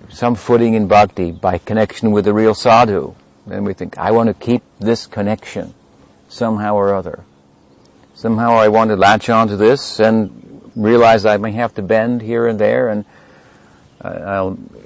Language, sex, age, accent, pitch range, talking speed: English, male, 60-79, American, 70-115 Hz, 170 wpm